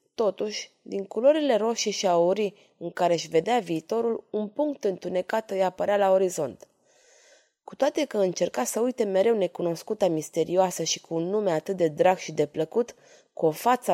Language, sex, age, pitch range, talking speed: Romanian, female, 20-39, 175-240 Hz, 170 wpm